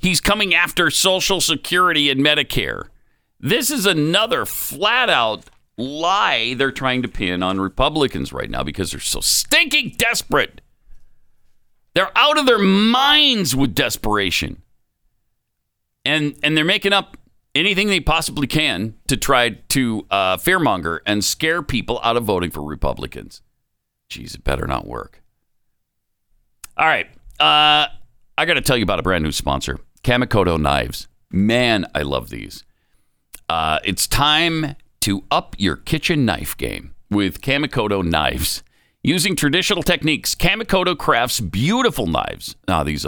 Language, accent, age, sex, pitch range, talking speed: English, American, 50-69, male, 95-155 Hz, 135 wpm